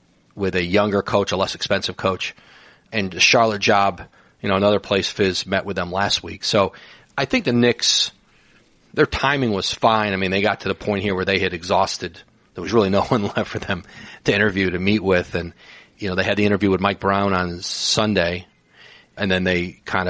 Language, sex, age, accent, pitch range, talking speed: English, male, 40-59, American, 95-115 Hz, 210 wpm